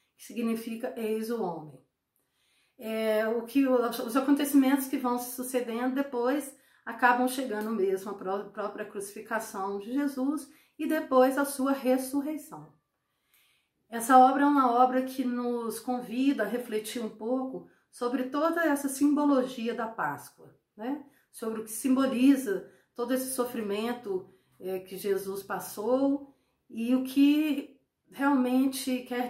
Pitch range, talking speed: 210-260 Hz, 130 wpm